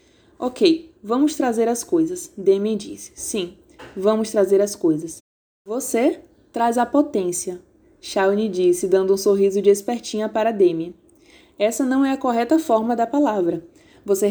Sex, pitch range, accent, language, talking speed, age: female, 205-290 Hz, Brazilian, Portuguese, 145 wpm, 20-39